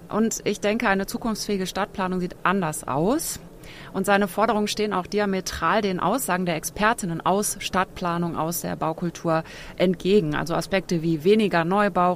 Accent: German